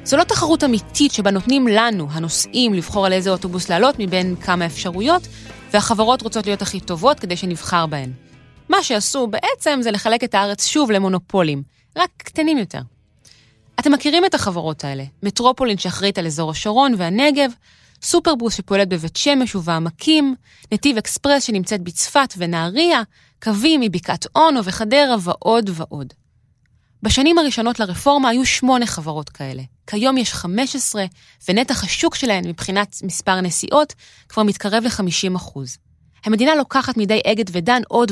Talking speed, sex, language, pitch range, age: 140 wpm, female, Hebrew, 180-255 Hz, 20-39